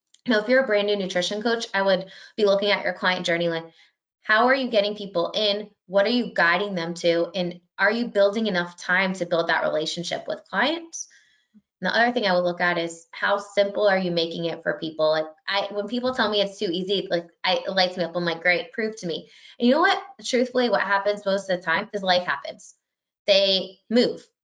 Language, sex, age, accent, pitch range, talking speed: English, female, 20-39, American, 175-220 Hz, 235 wpm